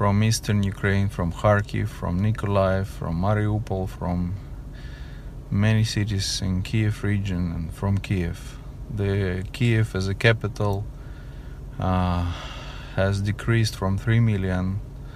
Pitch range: 100-115 Hz